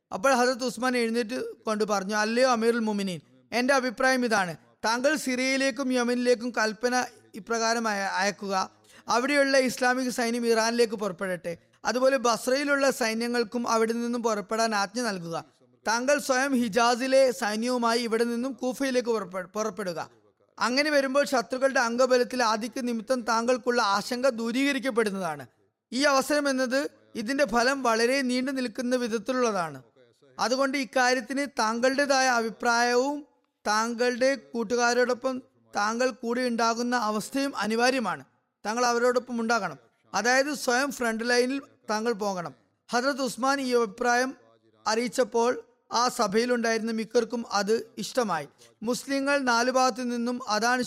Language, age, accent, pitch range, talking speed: Malayalam, 20-39, native, 220-255 Hz, 105 wpm